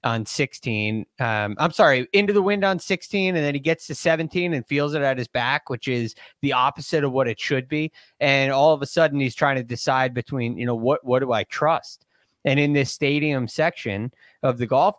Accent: American